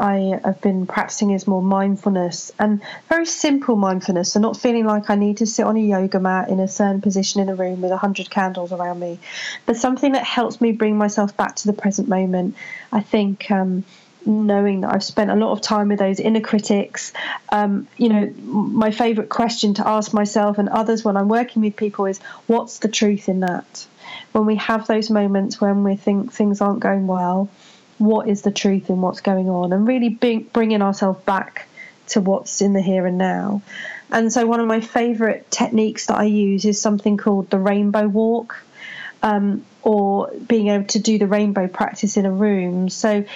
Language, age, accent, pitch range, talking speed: English, 30-49, British, 195-220 Hz, 200 wpm